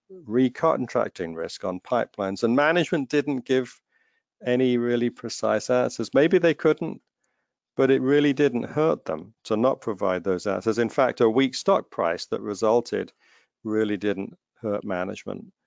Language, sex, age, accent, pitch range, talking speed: English, male, 50-69, British, 95-125 Hz, 145 wpm